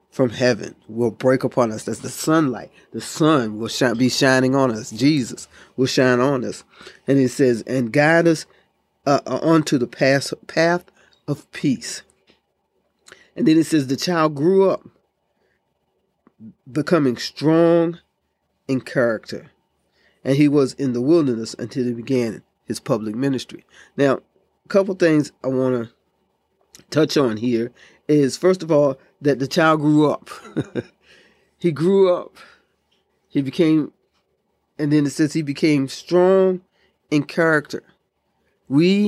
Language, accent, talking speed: English, American, 140 wpm